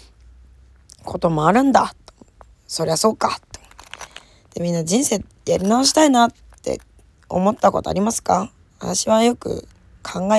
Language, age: Japanese, 20-39